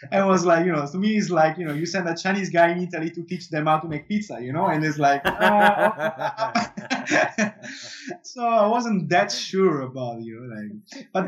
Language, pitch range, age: English, 130-170 Hz, 20-39